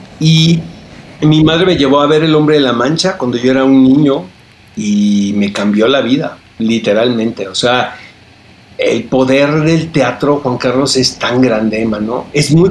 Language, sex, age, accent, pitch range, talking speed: Spanish, male, 50-69, Mexican, 120-145 Hz, 180 wpm